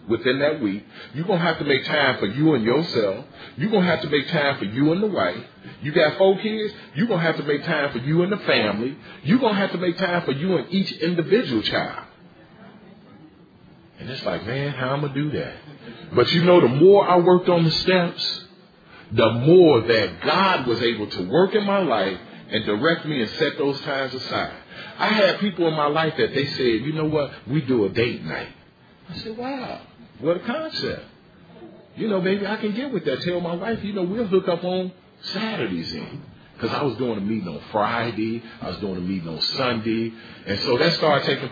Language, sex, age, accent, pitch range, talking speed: English, male, 40-59, American, 125-190 Hz, 225 wpm